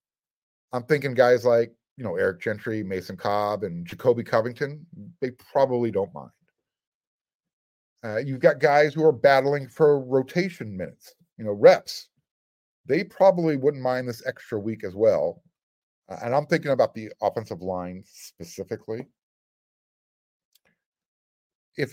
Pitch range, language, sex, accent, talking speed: 120-175 Hz, English, male, American, 135 wpm